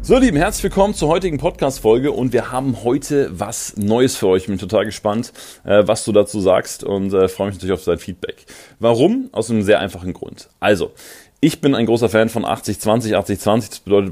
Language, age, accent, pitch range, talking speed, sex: German, 30-49, German, 95-115 Hz, 200 wpm, male